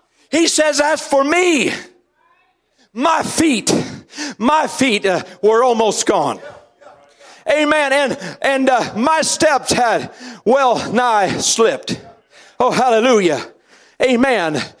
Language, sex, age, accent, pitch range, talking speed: English, male, 50-69, American, 205-275 Hz, 105 wpm